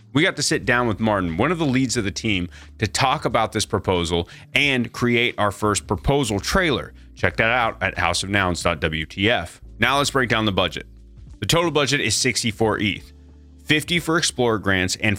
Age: 30-49